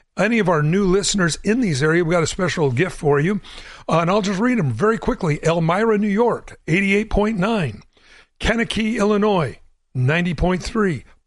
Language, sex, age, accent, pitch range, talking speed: English, male, 60-79, American, 150-205 Hz, 155 wpm